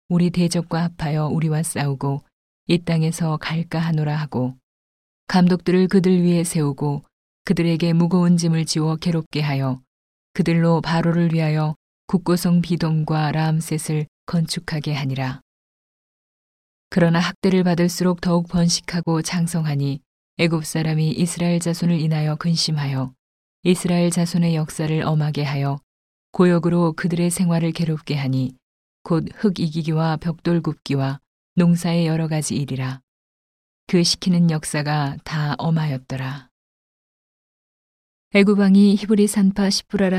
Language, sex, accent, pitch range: Korean, female, native, 150-175 Hz